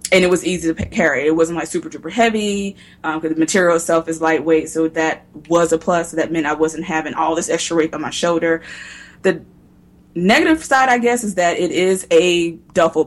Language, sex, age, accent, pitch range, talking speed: English, female, 20-39, American, 155-175 Hz, 215 wpm